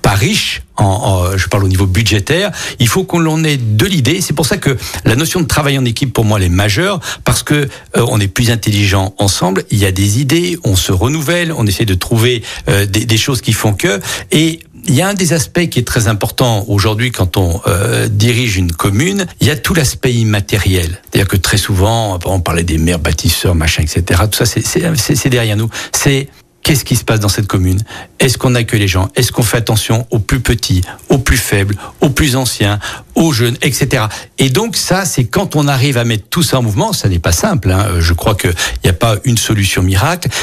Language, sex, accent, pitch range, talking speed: French, male, French, 100-135 Hz, 235 wpm